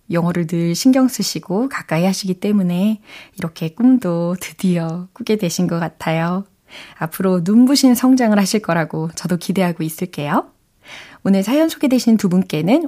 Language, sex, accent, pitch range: Korean, female, native, 180-260 Hz